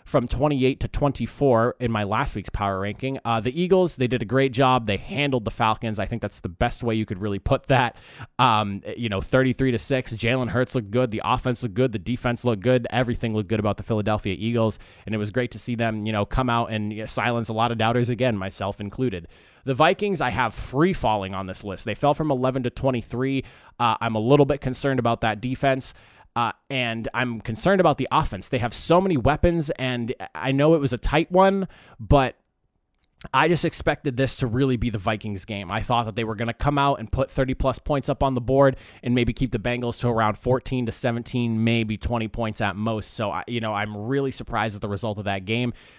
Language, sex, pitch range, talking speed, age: English, male, 110-135 Hz, 230 wpm, 20-39